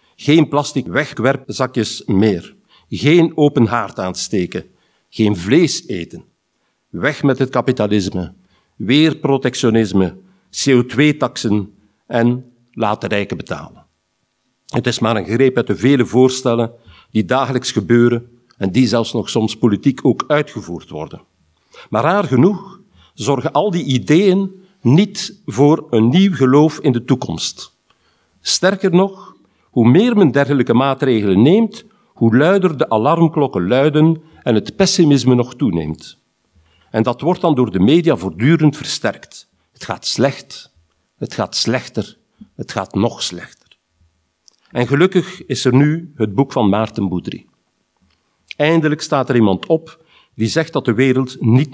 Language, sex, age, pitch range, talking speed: Dutch, male, 50-69, 110-150 Hz, 140 wpm